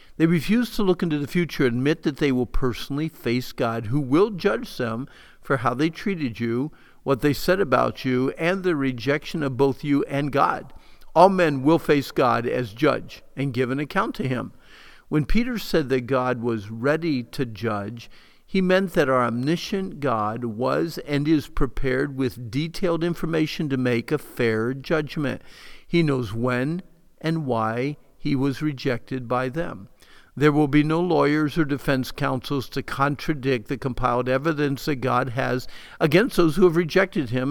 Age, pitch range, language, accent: 50-69, 125-160 Hz, English, American